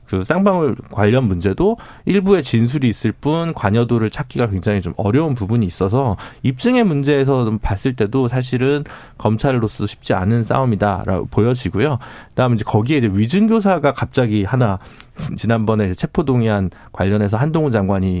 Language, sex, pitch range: Korean, male, 110-160 Hz